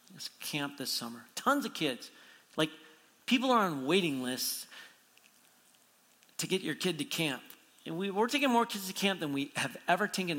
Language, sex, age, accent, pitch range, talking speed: English, male, 40-59, American, 155-205 Hz, 180 wpm